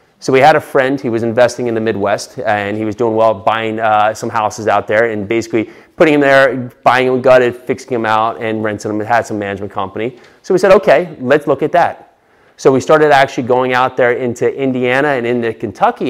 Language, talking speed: English, 225 wpm